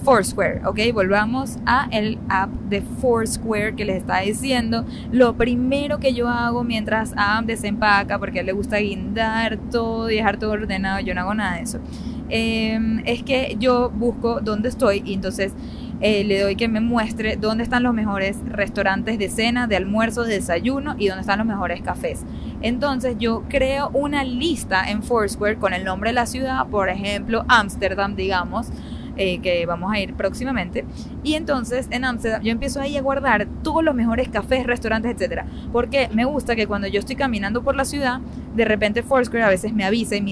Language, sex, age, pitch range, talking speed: Spanish, female, 10-29, 205-255 Hz, 190 wpm